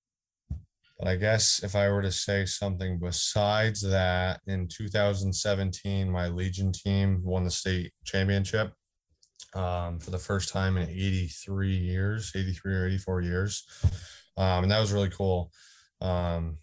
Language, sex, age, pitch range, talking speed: English, male, 20-39, 85-95 Hz, 140 wpm